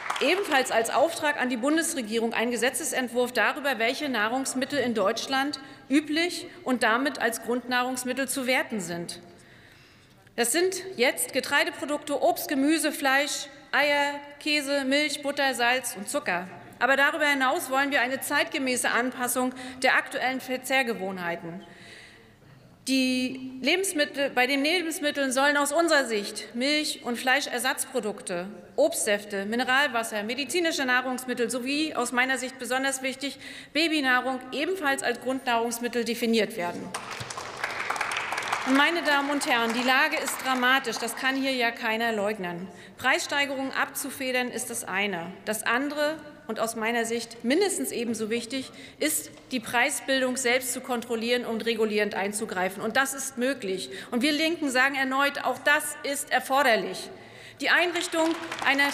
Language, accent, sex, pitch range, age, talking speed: German, German, female, 235-285 Hz, 40-59, 130 wpm